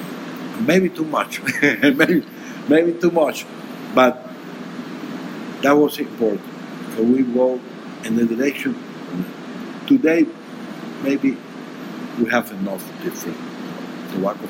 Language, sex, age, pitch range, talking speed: English, male, 60-79, 150-250 Hz, 100 wpm